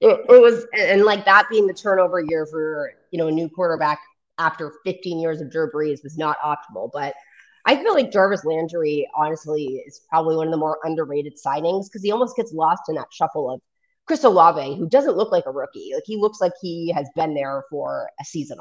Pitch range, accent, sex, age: 150-185 Hz, American, female, 30-49